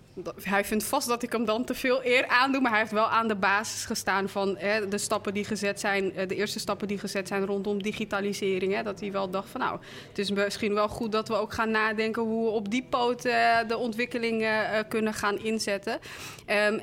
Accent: Dutch